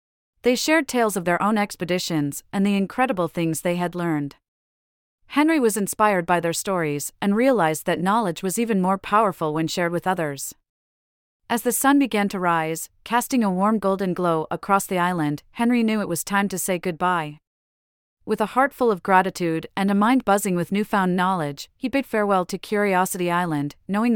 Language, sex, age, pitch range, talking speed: English, female, 40-59, 165-210 Hz, 185 wpm